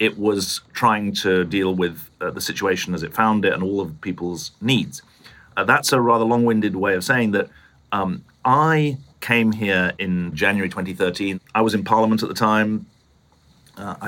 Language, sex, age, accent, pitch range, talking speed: English, male, 40-59, British, 85-110 Hz, 180 wpm